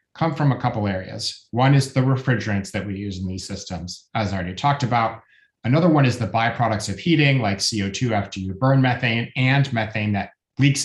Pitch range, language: 105-130 Hz, English